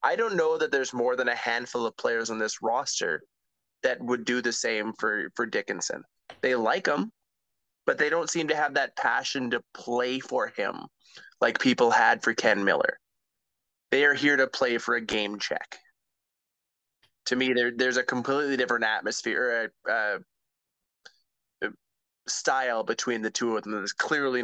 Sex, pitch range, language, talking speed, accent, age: male, 115-130 Hz, English, 170 wpm, American, 20-39